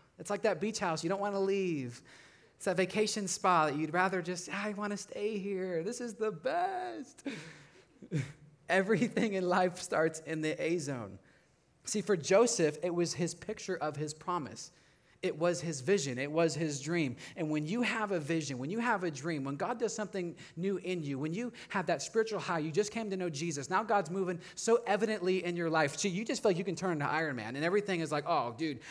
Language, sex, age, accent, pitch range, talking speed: English, male, 20-39, American, 150-195 Hz, 220 wpm